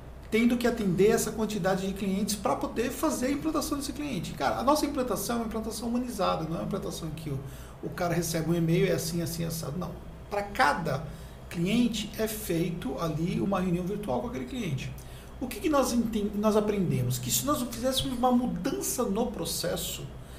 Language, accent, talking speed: Portuguese, Brazilian, 190 wpm